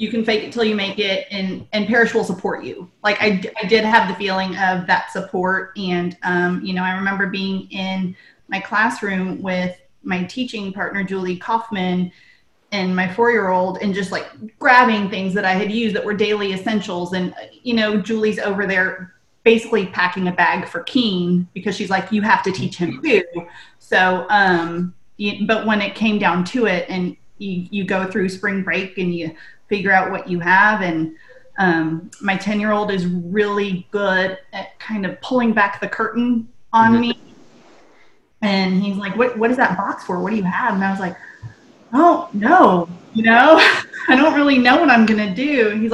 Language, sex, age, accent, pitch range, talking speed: English, female, 30-49, American, 185-225 Hz, 195 wpm